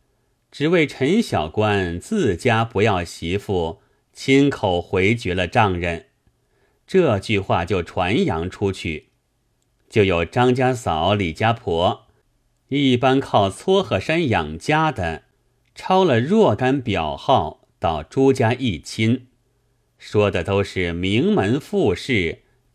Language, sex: Chinese, male